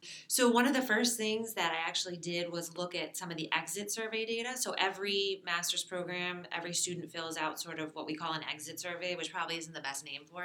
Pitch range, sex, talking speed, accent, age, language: 160-200 Hz, female, 240 wpm, American, 30-49, English